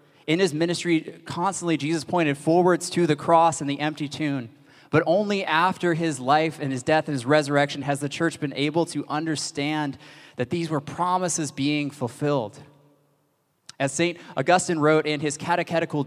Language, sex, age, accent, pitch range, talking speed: English, male, 30-49, American, 130-165 Hz, 170 wpm